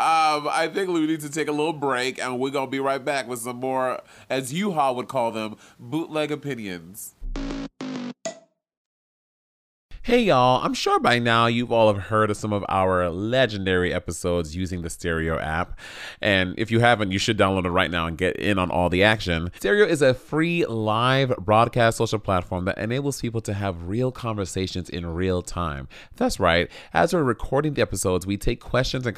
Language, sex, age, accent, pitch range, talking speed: English, male, 30-49, American, 95-125 Hz, 190 wpm